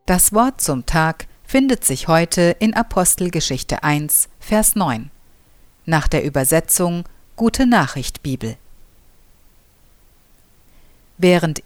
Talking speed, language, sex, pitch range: 90 wpm, German, female, 140-210 Hz